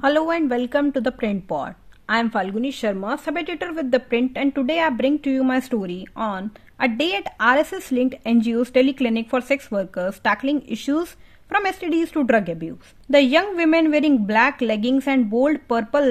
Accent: Indian